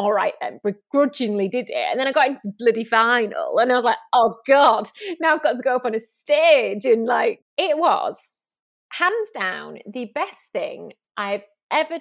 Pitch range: 210-290 Hz